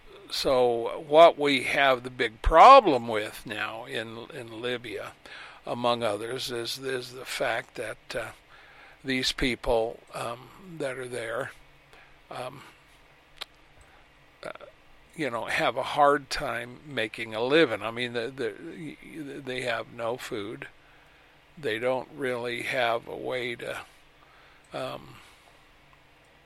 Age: 60-79